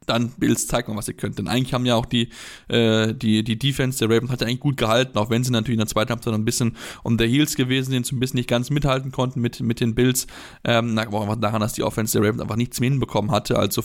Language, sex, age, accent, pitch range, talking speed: German, male, 10-29, German, 110-130 Hz, 285 wpm